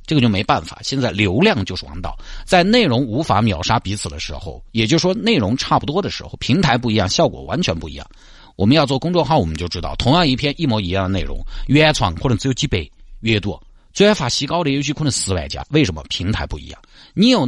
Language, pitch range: Chinese, 95-140 Hz